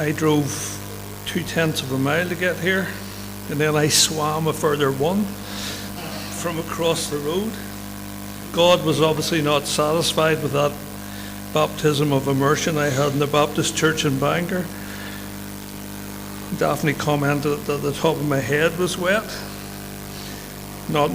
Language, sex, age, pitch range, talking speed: English, male, 60-79, 100-165 Hz, 140 wpm